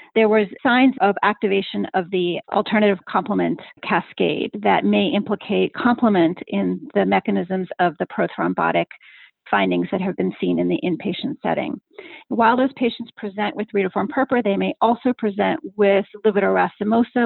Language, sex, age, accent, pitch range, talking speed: English, female, 40-59, American, 185-230 Hz, 145 wpm